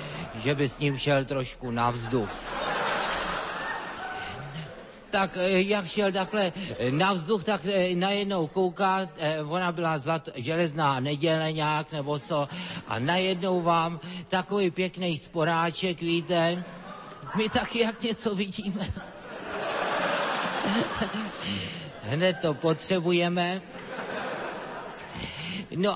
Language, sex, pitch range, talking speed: Slovak, male, 140-180 Hz, 90 wpm